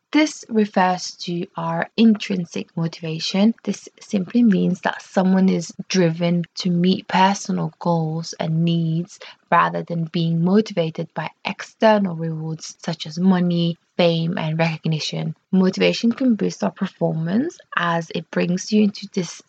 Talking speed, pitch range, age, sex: 130 wpm, 170-200 Hz, 20-39, female